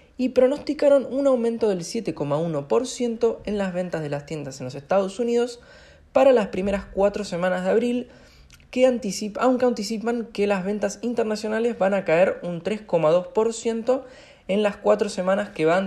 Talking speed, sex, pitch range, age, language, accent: 150 wpm, male, 155-220 Hz, 20-39, Spanish, Argentinian